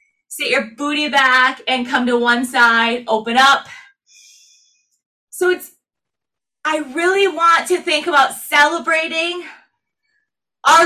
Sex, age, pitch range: female, 20-39, 240-325 Hz